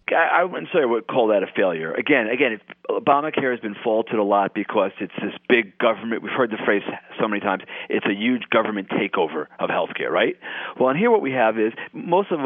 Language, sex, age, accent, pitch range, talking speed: English, male, 40-59, American, 110-175 Hz, 230 wpm